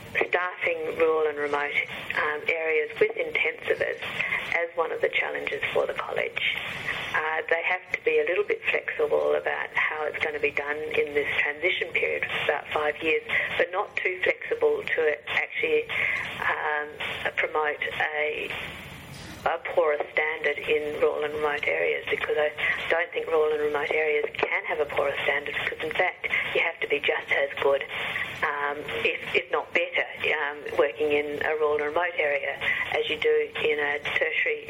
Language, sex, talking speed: English, female, 170 wpm